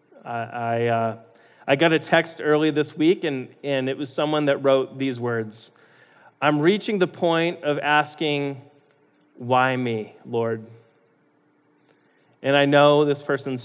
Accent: American